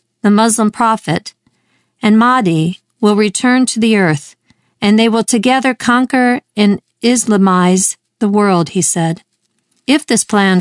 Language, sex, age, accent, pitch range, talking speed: English, female, 50-69, American, 190-235 Hz, 135 wpm